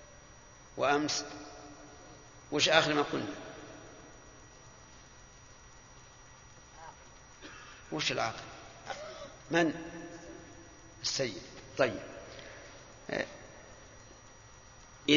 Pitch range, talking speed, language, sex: 135-165 Hz, 40 wpm, Arabic, male